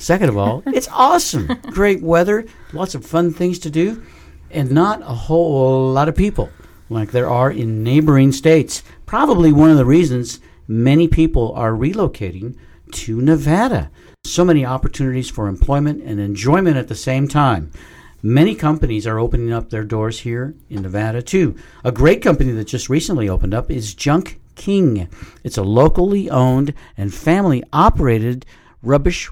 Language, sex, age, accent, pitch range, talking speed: English, male, 60-79, American, 110-160 Hz, 160 wpm